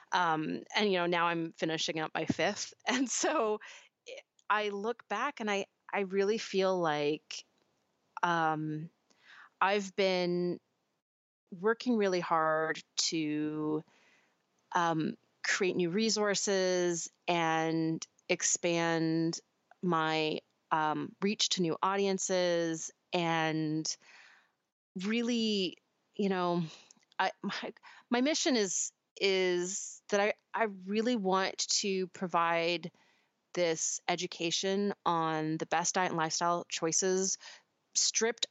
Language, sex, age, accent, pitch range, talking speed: English, female, 30-49, American, 165-200 Hz, 105 wpm